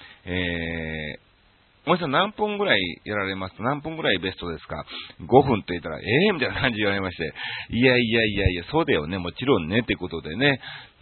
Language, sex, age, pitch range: Japanese, male, 40-59, 95-160 Hz